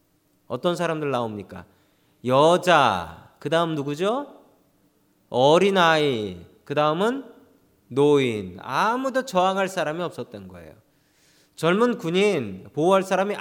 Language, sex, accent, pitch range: Korean, male, native, 135-195 Hz